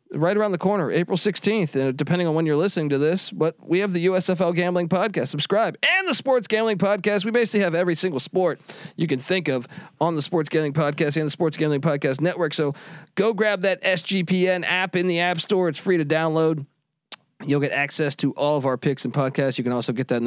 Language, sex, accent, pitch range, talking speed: English, male, American, 150-210 Hz, 230 wpm